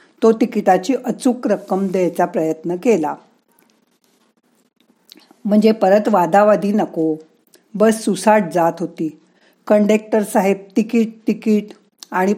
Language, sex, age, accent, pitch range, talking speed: Marathi, female, 50-69, native, 185-230 Hz, 95 wpm